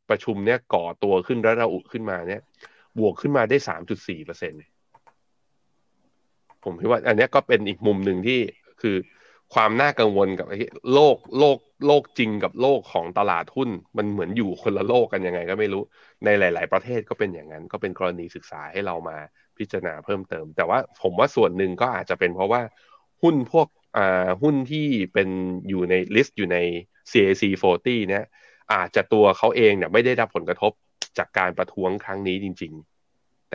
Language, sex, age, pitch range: Thai, male, 20-39, 90-115 Hz